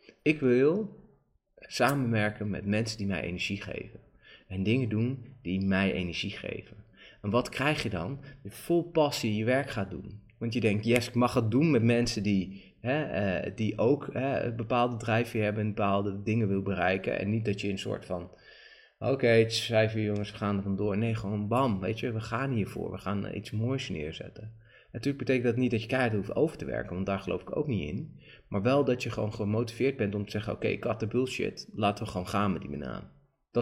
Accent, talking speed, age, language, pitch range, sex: Dutch, 230 wpm, 30-49, Dutch, 100-120 Hz, male